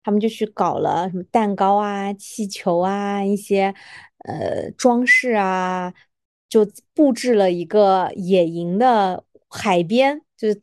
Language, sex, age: Chinese, female, 20-39